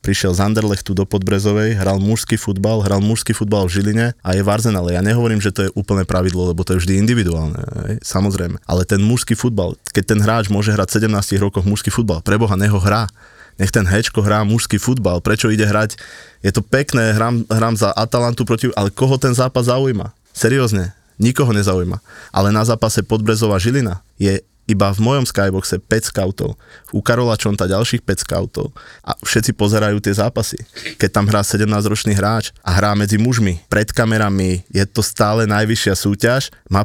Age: 20-39